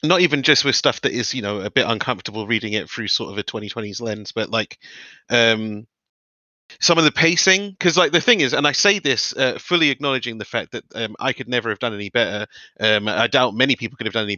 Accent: British